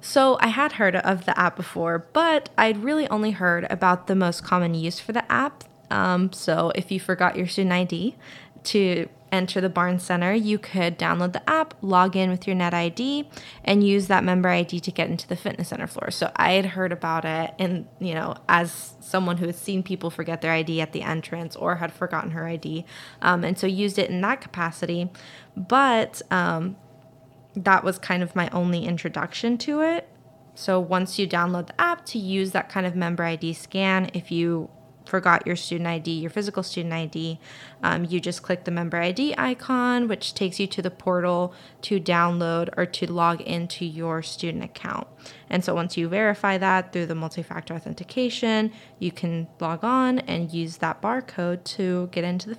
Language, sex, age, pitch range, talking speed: English, female, 20-39, 170-195 Hz, 195 wpm